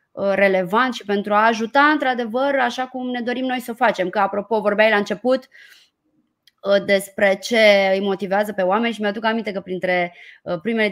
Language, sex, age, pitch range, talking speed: Romanian, female, 20-39, 195-260 Hz, 170 wpm